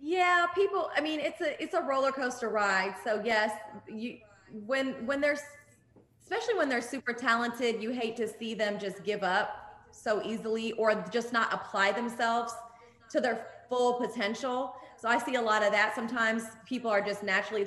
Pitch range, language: 205-245 Hz, English